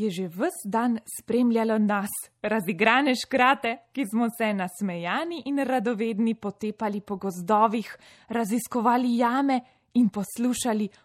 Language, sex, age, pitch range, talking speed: Italian, female, 20-39, 190-250 Hz, 115 wpm